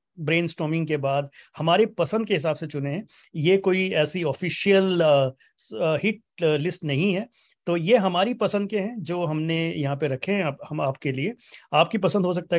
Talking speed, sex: 180 wpm, male